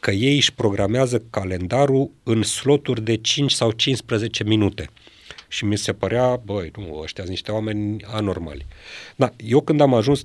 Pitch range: 100-125 Hz